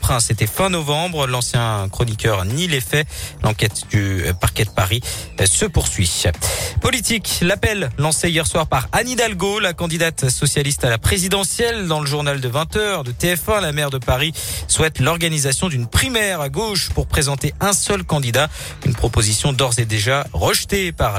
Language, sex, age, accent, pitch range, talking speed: French, male, 50-69, French, 115-160 Hz, 165 wpm